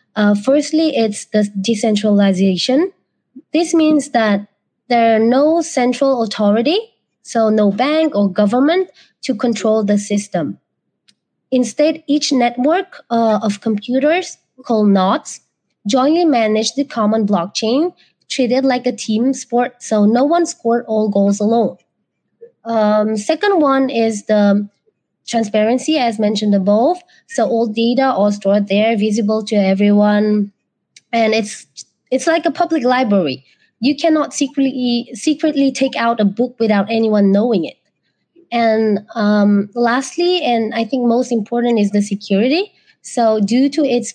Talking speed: 135 wpm